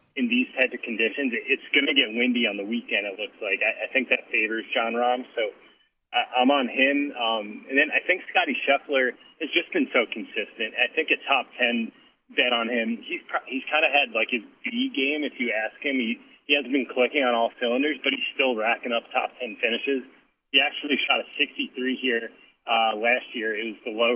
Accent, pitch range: American, 115-140 Hz